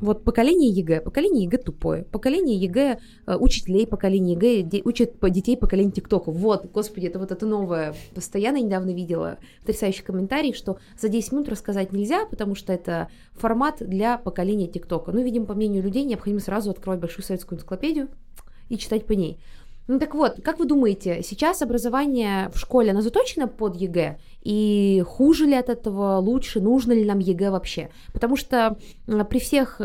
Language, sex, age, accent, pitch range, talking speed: Russian, female, 20-39, native, 190-240 Hz, 175 wpm